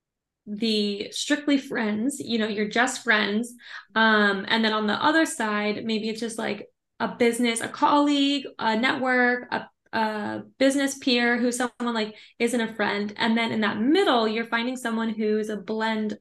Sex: female